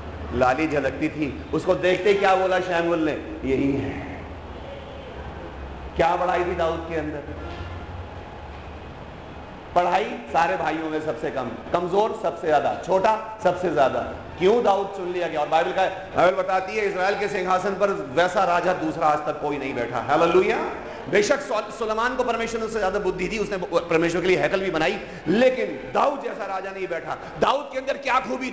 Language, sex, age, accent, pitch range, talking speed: Hindi, male, 40-59, native, 145-225 Hz, 165 wpm